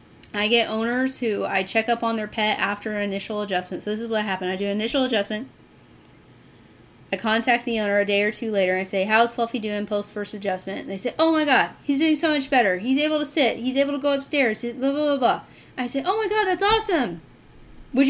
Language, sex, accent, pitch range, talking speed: English, female, American, 205-275 Hz, 240 wpm